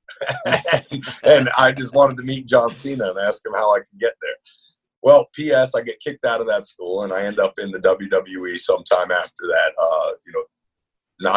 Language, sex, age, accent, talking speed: English, male, 50-69, American, 205 wpm